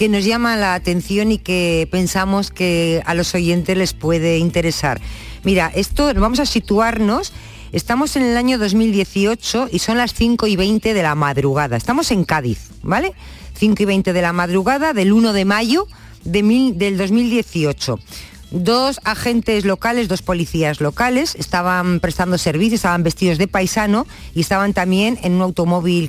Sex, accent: female, Spanish